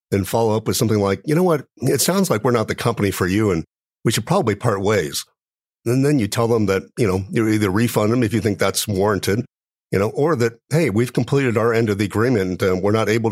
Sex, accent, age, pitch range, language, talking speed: male, American, 50-69, 100-125 Hz, English, 255 wpm